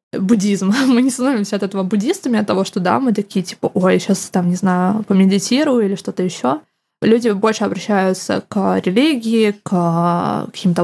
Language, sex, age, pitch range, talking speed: Russian, female, 20-39, 195-225 Hz, 165 wpm